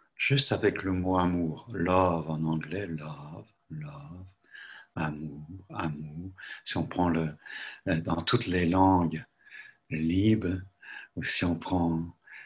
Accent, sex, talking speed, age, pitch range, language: French, male, 120 wpm, 60-79, 85-110 Hz, French